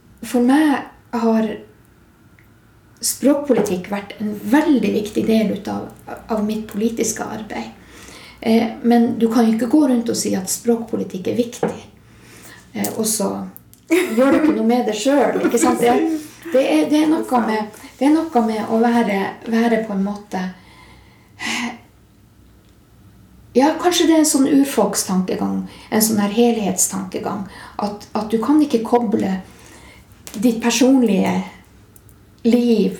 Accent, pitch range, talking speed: native, 205-260 Hz, 120 wpm